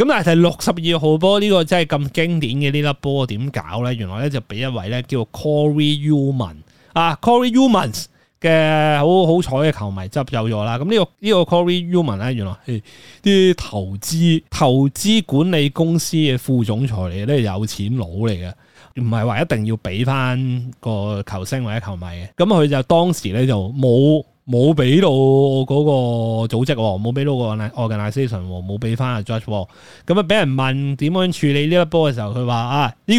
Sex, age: male, 20-39